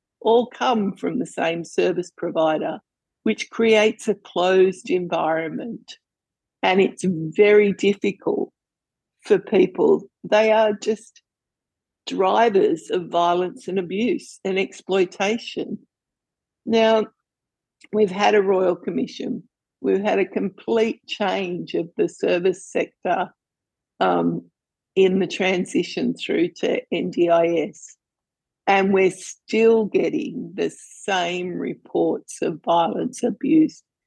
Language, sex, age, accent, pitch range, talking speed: English, female, 60-79, Australian, 185-245 Hz, 105 wpm